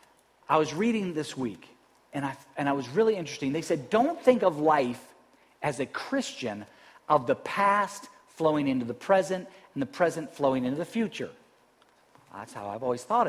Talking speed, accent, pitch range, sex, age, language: 180 wpm, American, 160-245 Hz, male, 40-59, English